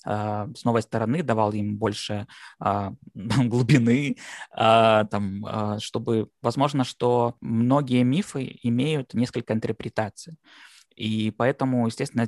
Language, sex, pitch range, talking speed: Russian, male, 110-125 Hz, 100 wpm